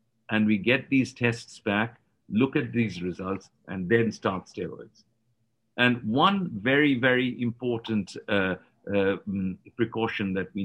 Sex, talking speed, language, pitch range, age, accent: male, 140 wpm, English, 105-125 Hz, 50-69, Indian